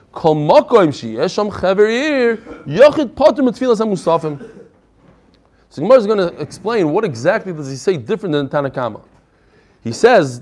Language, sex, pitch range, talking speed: English, male, 155-215 Hz, 90 wpm